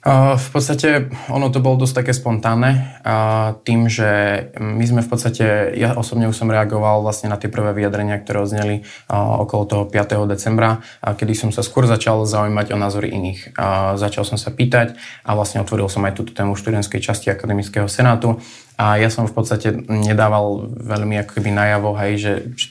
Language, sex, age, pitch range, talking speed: Slovak, male, 20-39, 105-115 Hz, 180 wpm